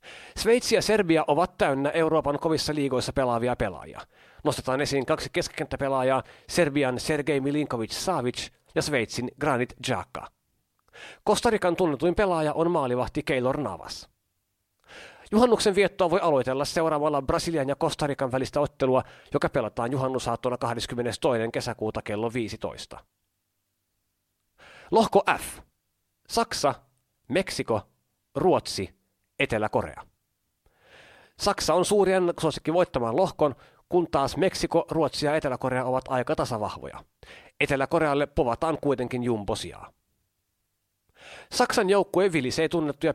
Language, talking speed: Finnish, 105 wpm